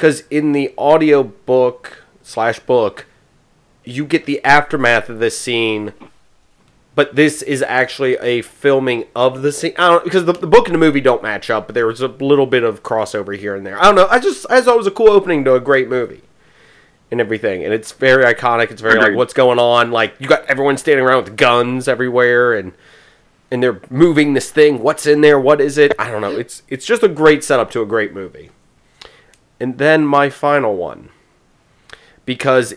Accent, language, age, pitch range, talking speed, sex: American, English, 30-49, 110-145 Hz, 210 wpm, male